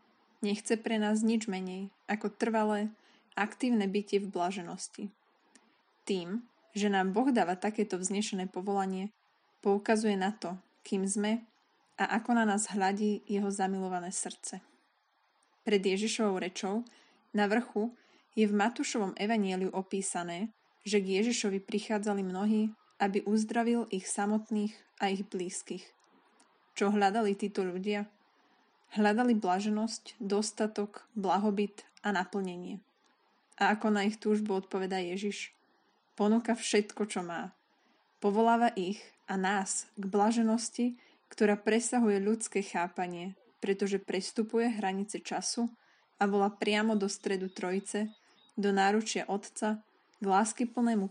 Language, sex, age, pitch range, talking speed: Slovak, female, 20-39, 195-220 Hz, 115 wpm